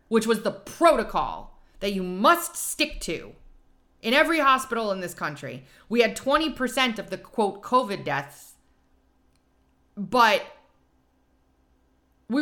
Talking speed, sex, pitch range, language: 120 wpm, female, 165-225 Hz, English